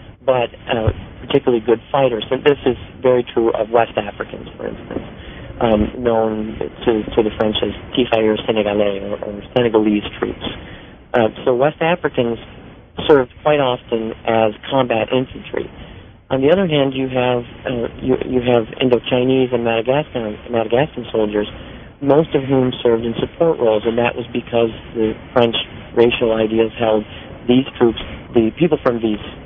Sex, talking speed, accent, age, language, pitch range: male, 150 wpm, American, 40-59, English, 110-125 Hz